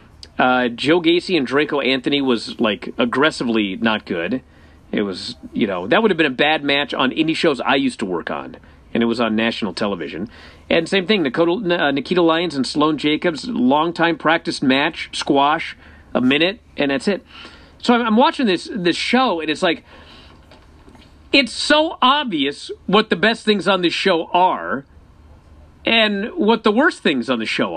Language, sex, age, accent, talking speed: English, male, 50-69, American, 175 wpm